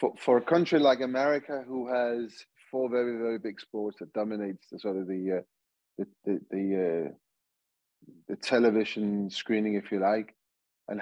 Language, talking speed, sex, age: English, 165 wpm, male, 30-49